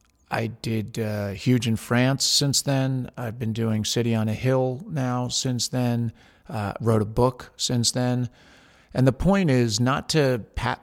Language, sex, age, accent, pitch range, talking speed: English, male, 40-59, American, 110-135 Hz, 170 wpm